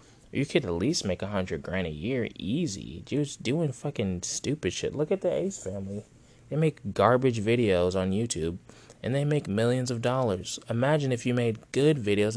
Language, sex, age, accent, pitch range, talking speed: English, male, 20-39, American, 95-125 Hz, 190 wpm